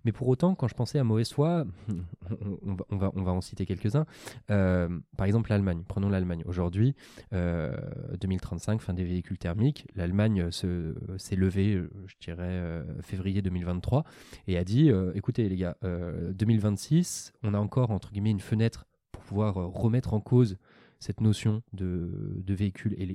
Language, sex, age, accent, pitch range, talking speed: French, male, 20-39, French, 95-120 Hz, 170 wpm